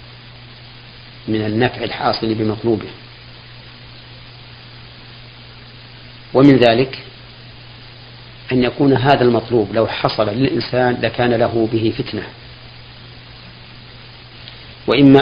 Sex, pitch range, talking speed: male, 115-120 Hz, 70 wpm